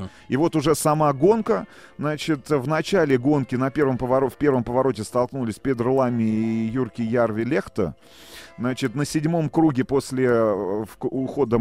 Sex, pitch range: male, 110-135 Hz